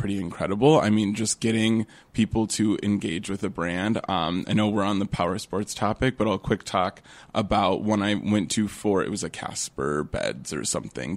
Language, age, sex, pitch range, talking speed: English, 20-39, male, 100-120 Hz, 205 wpm